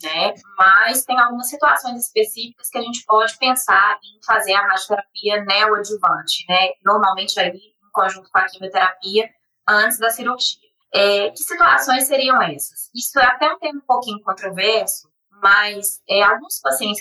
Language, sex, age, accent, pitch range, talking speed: Portuguese, female, 20-39, Brazilian, 195-250 Hz, 155 wpm